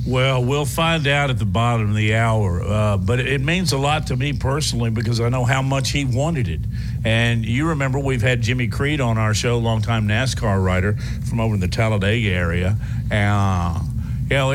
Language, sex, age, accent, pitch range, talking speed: English, male, 50-69, American, 110-135 Hz, 200 wpm